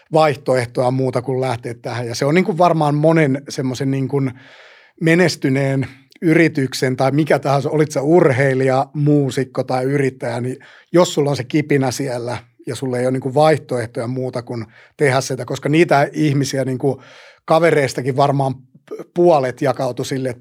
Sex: male